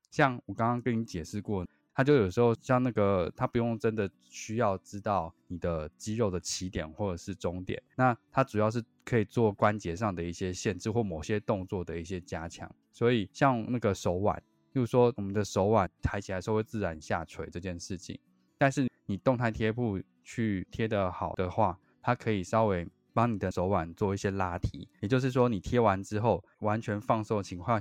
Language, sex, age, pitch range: Chinese, male, 20-39, 90-115 Hz